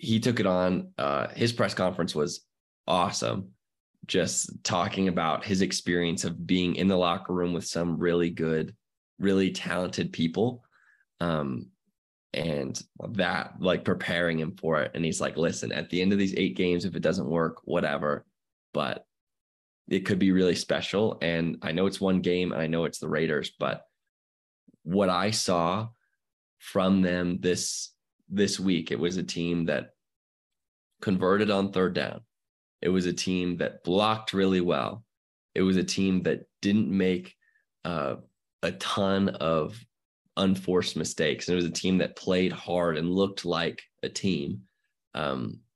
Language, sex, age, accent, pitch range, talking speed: English, male, 20-39, American, 85-95 Hz, 160 wpm